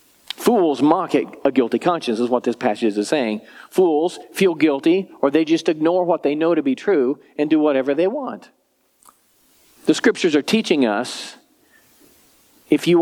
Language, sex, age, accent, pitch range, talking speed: English, male, 50-69, American, 140-210 Hz, 165 wpm